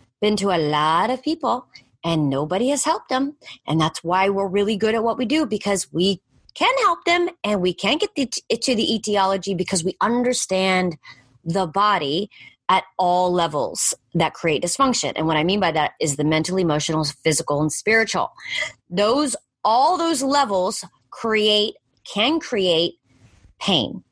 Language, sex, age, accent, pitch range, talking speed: English, female, 30-49, American, 175-255 Hz, 160 wpm